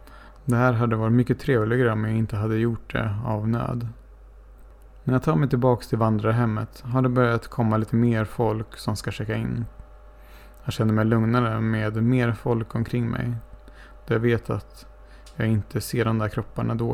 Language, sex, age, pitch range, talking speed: Swedish, male, 30-49, 110-120 Hz, 185 wpm